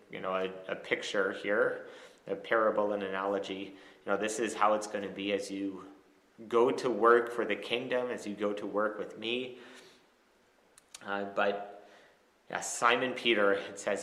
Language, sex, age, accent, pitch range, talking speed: English, male, 30-49, American, 100-120 Hz, 170 wpm